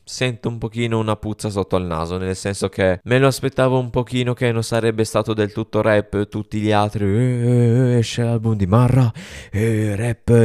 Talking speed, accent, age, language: 200 wpm, native, 20-39, Italian